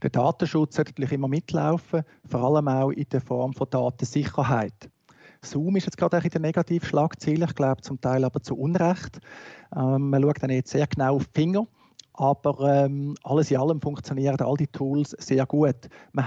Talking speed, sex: 185 wpm, male